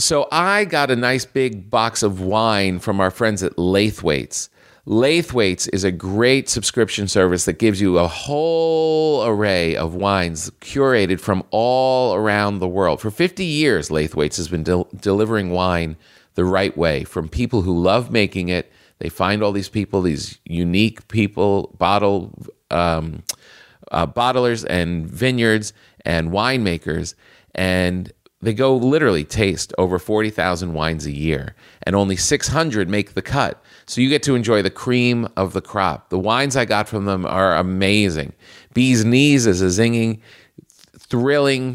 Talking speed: 155 wpm